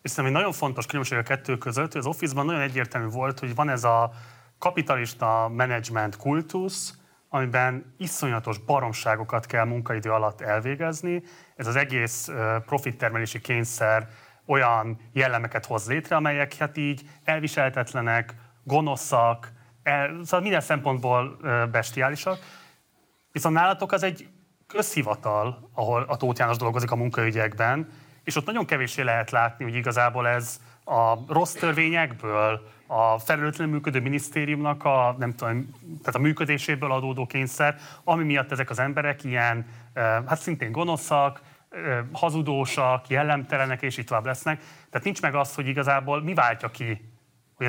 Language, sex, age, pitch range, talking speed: Hungarian, male, 30-49, 115-145 Hz, 135 wpm